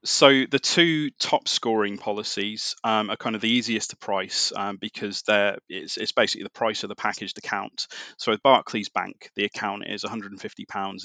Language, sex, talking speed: English, male, 185 wpm